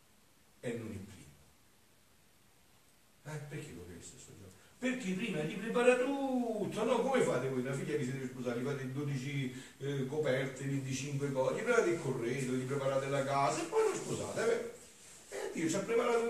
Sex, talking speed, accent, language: male, 180 wpm, native, Italian